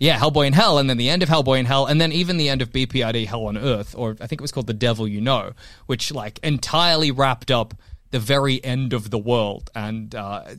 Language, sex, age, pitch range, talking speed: English, male, 20-39, 125-170 Hz, 255 wpm